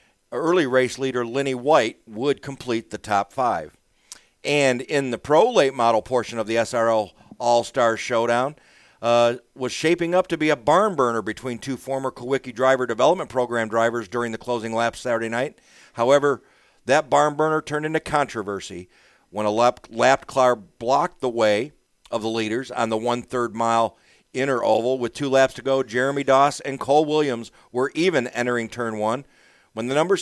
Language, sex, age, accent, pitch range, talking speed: English, male, 50-69, American, 115-140 Hz, 170 wpm